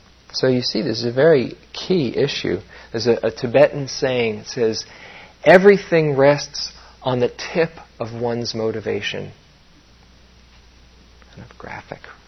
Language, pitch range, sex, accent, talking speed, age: English, 85-140 Hz, male, American, 120 wpm, 40-59